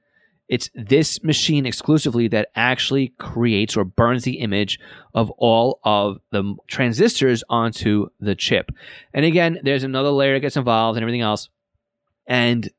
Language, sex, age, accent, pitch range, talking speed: English, male, 30-49, American, 110-135 Hz, 145 wpm